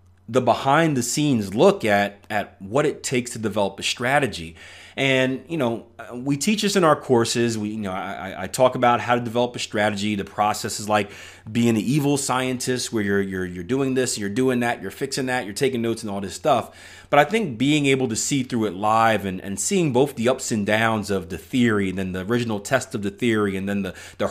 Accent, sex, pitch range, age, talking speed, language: American, male, 100-130 Hz, 30-49, 230 wpm, English